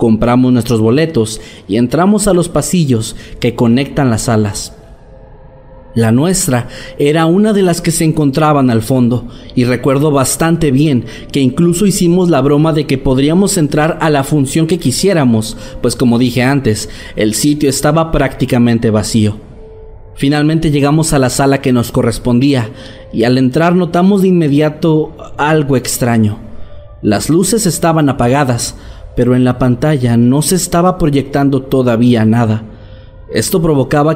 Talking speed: 145 wpm